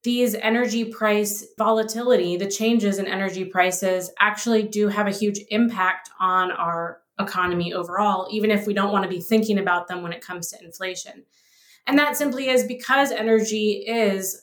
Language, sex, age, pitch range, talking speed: English, female, 20-39, 195-230 Hz, 170 wpm